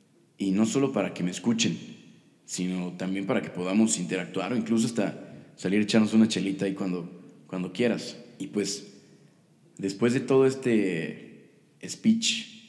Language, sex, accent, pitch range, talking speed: Spanish, male, Mexican, 95-110 Hz, 145 wpm